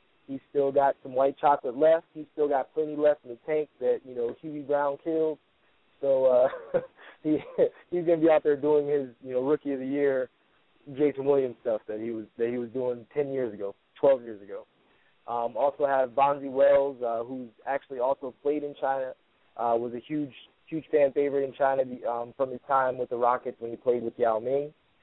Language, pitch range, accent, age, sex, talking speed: English, 120-145 Hz, American, 20-39, male, 210 wpm